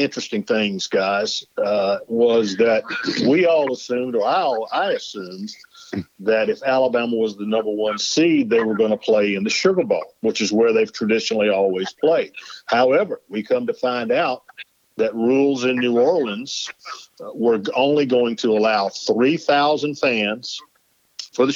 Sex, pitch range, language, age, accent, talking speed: male, 110-155 Hz, English, 50-69, American, 160 wpm